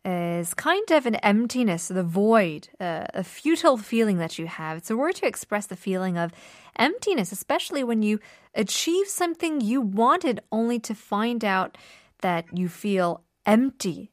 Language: Korean